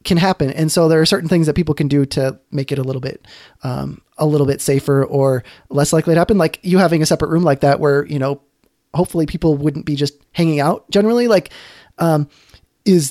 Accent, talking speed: American, 230 wpm